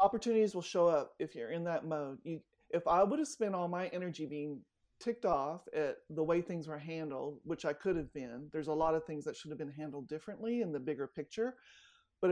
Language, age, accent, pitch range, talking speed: English, 40-59, American, 150-180 Hz, 230 wpm